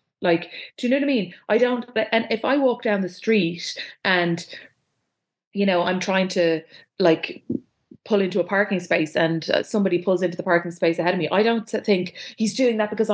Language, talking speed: English, 210 wpm